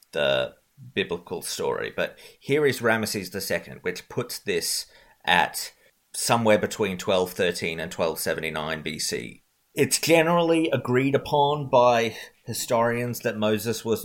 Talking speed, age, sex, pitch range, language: 115 wpm, 30-49, male, 100-150 Hz, English